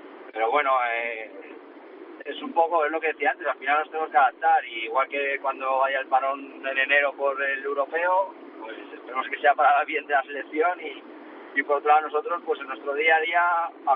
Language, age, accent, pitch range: Spanish, 30-49, Spanish, 135-190 Hz